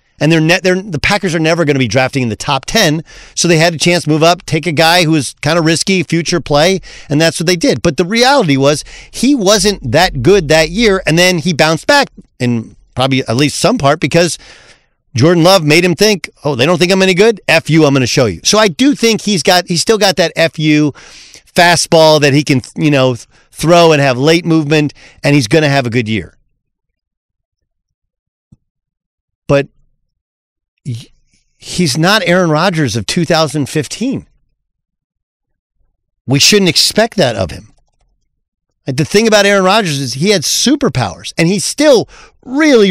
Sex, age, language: male, 40-59, English